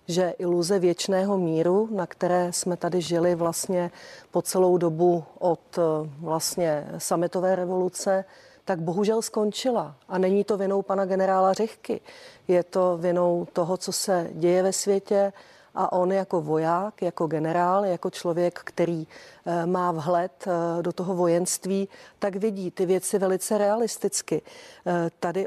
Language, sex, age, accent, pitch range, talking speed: Czech, female, 40-59, native, 180-195 Hz, 135 wpm